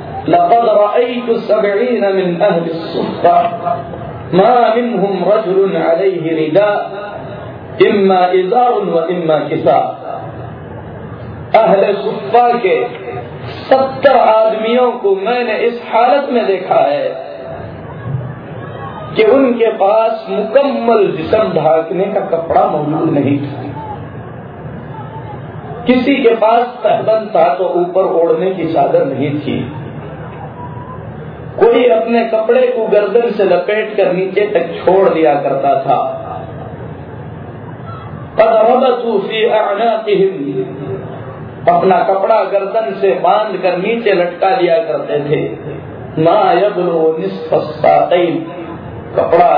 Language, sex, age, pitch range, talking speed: Hindi, male, 50-69, 165-225 Hz, 75 wpm